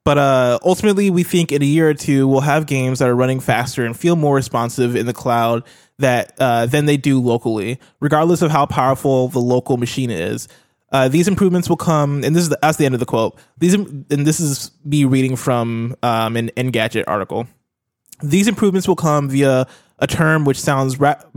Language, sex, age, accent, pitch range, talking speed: English, male, 20-39, American, 125-155 Hz, 210 wpm